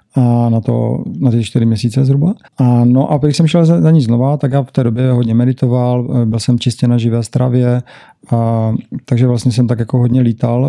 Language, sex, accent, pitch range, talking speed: Czech, male, native, 115-130 Hz, 220 wpm